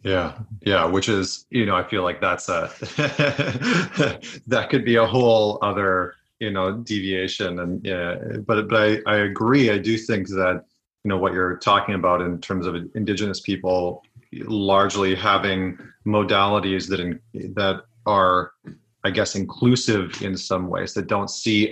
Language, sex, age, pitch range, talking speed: English, male, 30-49, 90-105 Hz, 160 wpm